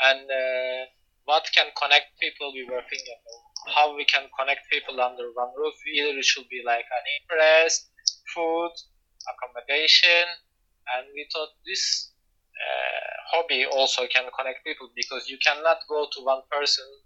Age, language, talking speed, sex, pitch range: 20-39, English, 150 wpm, male, 130-165 Hz